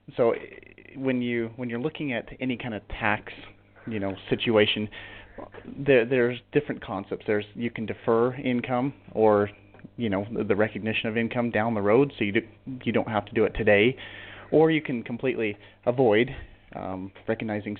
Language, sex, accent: English, male, American